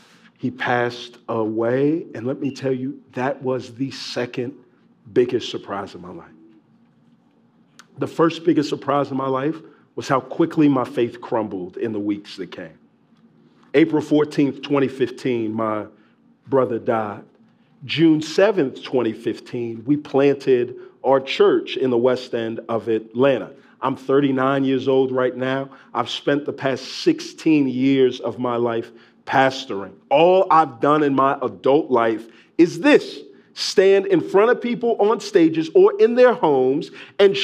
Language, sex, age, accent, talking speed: English, male, 40-59, American, 145 wpm